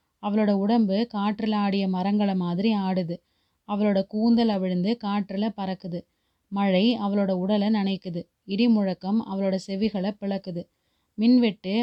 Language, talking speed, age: Tamil, 110 wpm, 30-49